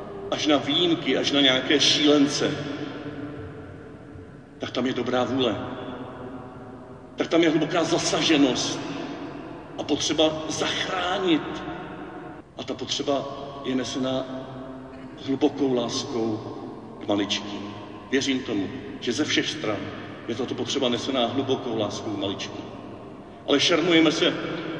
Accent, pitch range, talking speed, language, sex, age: native, 130-155 Hz, 110 wpm, Czech, male, 50-69